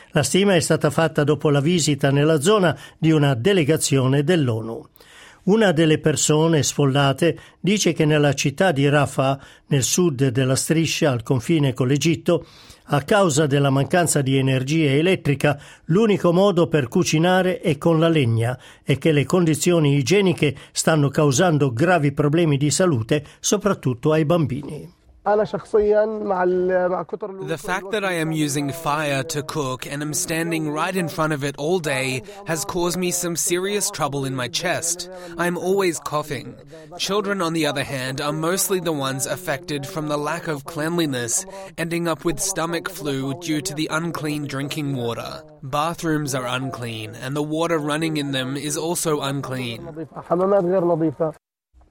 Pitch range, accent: 140-175 Hz, native